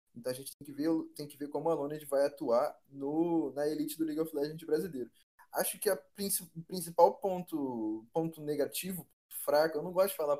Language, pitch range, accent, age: Portuguese, 135-165 Hz, Brazilian, 20-39